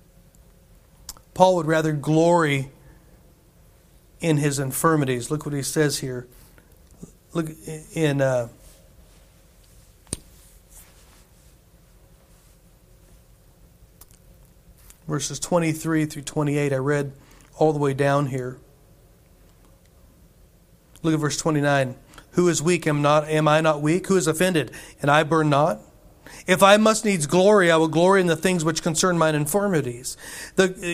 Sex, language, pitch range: male, English, 150-195 Hz